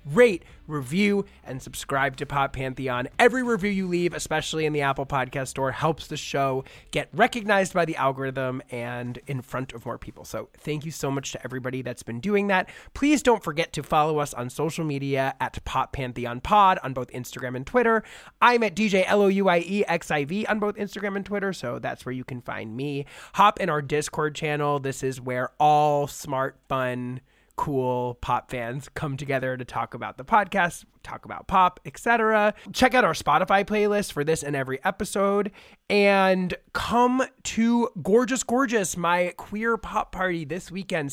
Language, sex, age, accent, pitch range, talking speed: English, male, 30-49, American, 135-195 Hz, 180 wpm